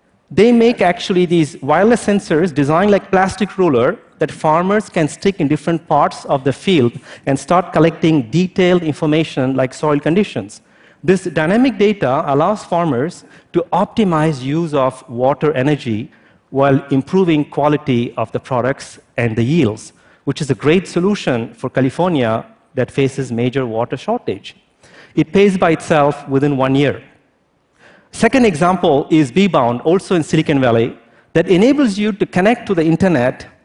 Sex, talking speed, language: male, 150 wpm, Portuguese